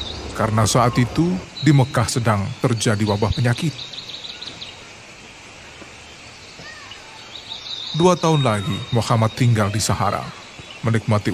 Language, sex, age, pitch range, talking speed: Indonesian, male, 30-49, 105-135 Hz, 90 wpm